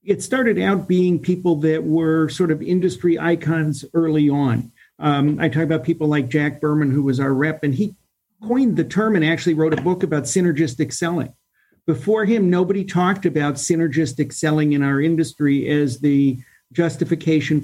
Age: 50-69